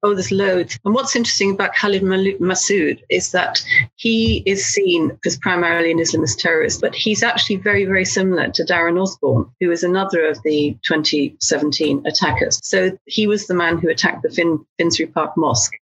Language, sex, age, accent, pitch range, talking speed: English, female, 40-59, British, 160-205 Hz, 180 wpm